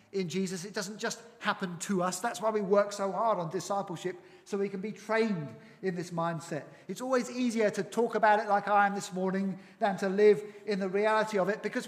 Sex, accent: male, British